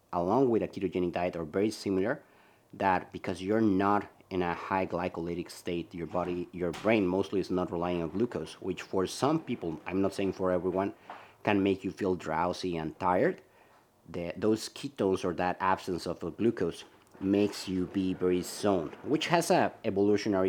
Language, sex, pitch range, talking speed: English, male, 90-105 Hz, 180 wpm